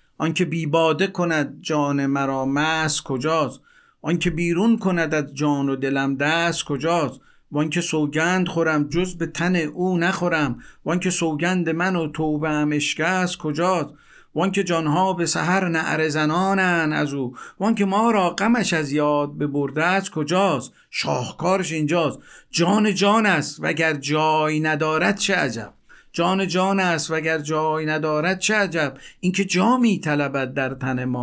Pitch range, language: 145-175 Hz, Persian